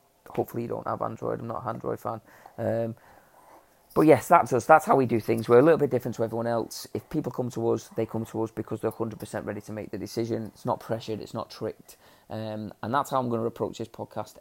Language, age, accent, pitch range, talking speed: English, 20-39, British, 110-125 Hz, 255 wpm